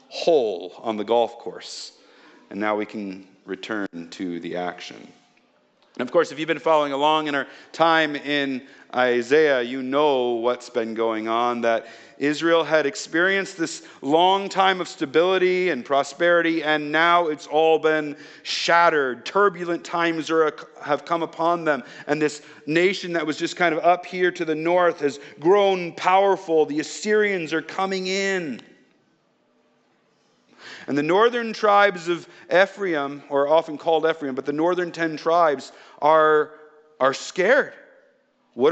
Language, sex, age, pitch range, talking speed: English, male, 40-59, 120-170 Hz, 145 wpm